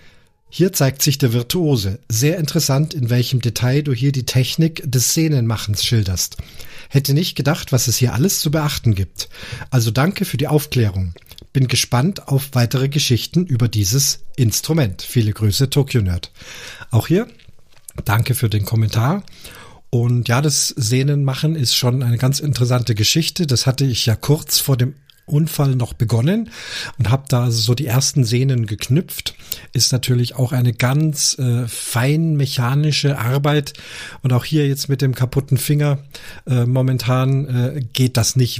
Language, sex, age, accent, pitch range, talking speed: German, male, 40-59, German, 115-140 Hz, 155 wpm